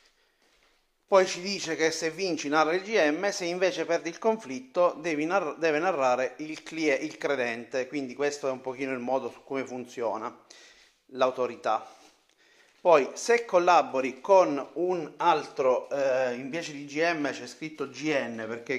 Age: 30-49